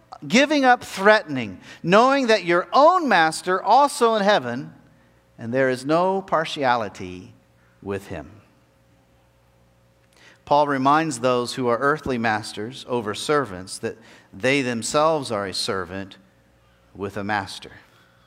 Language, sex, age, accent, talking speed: English, male, 50-69, American, 120 wpm